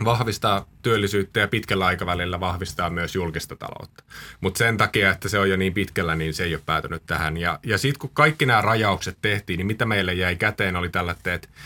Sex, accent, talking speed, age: male, native, 200 wpm, 30-49